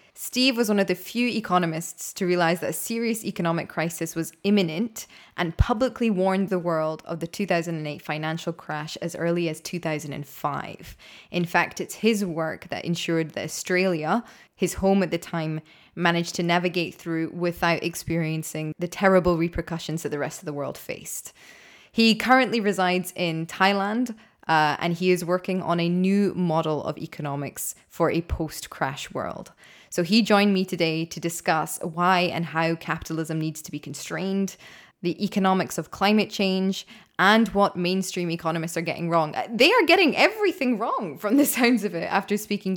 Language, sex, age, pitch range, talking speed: English, female, 20-39, 165-210 Hz, 165 wpm